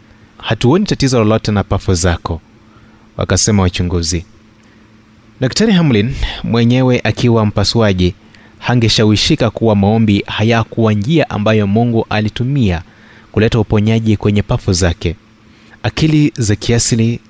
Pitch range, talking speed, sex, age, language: 105-125 Hz, 95 wpm, male, 30-49, Swahili